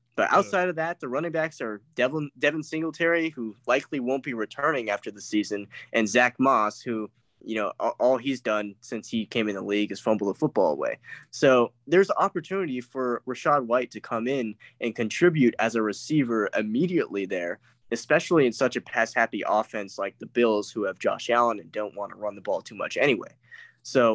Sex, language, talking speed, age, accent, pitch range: male, English, 200 wpm, 10-29, American, 105-135 Hz